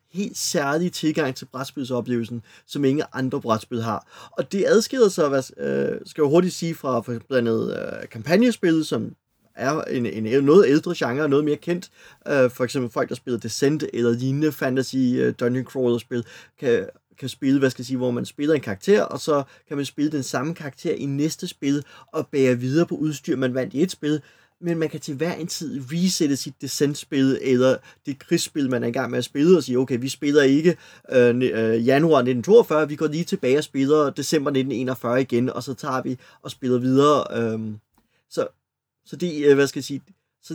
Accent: native